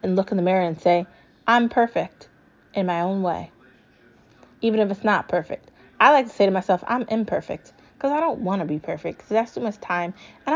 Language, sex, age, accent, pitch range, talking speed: English, female, 20-39, American, 170-215 Hz, 220 wpm